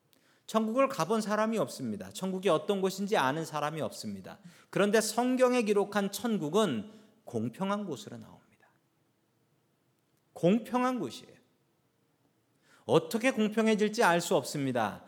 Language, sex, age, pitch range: Korean, male, 40-59, 160-225 Hz